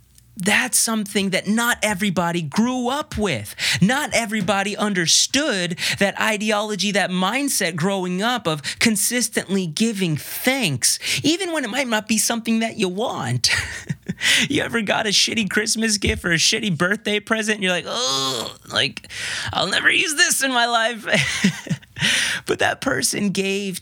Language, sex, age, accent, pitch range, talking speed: English, male, 30-49, American, 135-215 Hz, 145 wpm